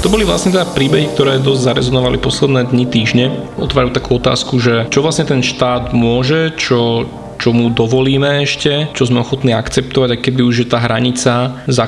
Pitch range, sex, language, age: 125-140 Hz, male, Slovak, 20-39